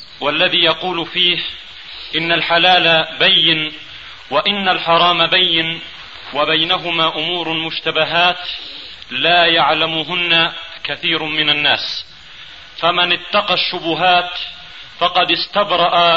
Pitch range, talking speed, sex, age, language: 165-180 Hz, 80 wpm, male, 40-59, Arabic